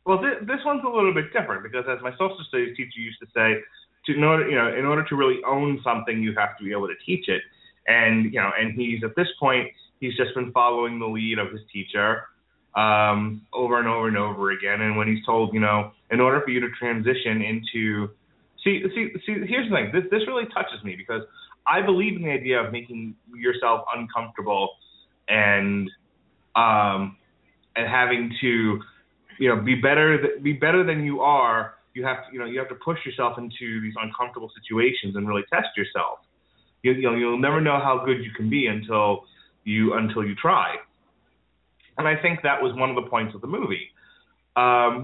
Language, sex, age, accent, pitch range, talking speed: English, male, 20-39, American, 110-140 Hz, 210 wpm